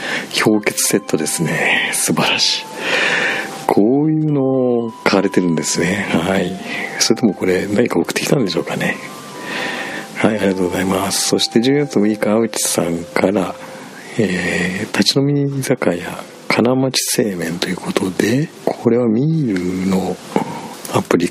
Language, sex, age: Japanese, male, 50-69